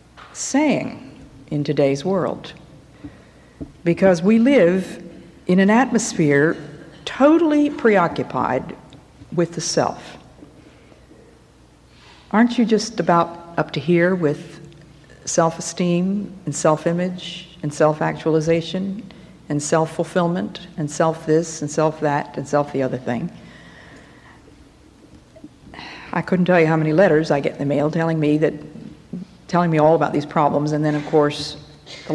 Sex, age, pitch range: female, 60-79, 150-185 Hz